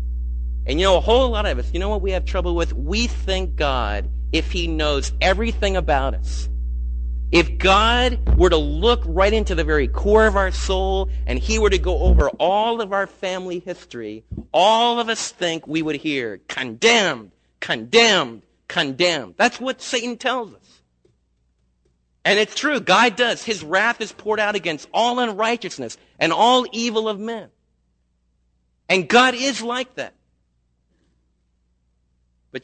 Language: English